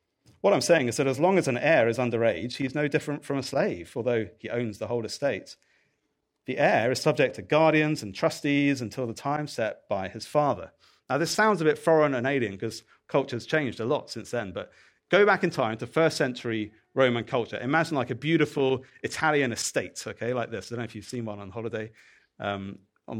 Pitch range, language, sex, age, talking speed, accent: 115-150 Hz, English, male, 40-59, 220 wpm, British